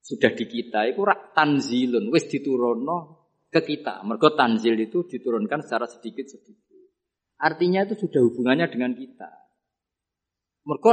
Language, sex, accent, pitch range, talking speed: Indonesian, male, native, 125-205 Hz, 120 wpm